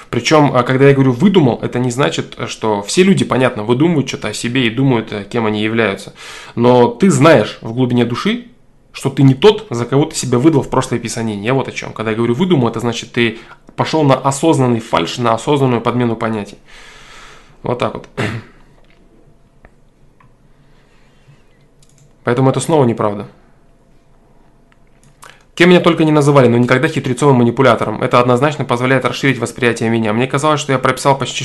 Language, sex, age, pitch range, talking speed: Russian, male, 20-39, 120-140 Hz, 165 wpm